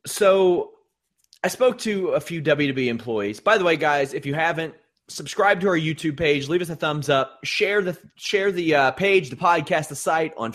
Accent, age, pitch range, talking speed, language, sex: American, 30-49, 120-175 Hz, 205 wpm, English, male